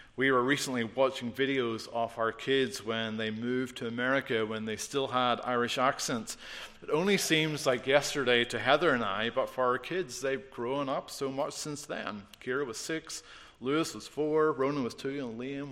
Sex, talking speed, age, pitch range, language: male, 190 wpm, 40-59, 115-135 Hz, English